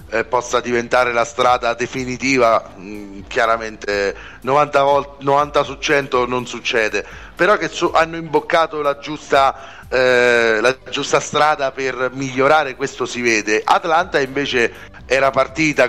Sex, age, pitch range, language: male, 40-59, 115-140 Hz, Italian